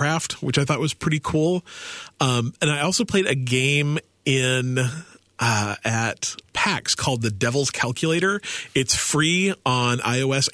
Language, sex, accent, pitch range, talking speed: English, male, American, 110-140 Hz, 140 wpm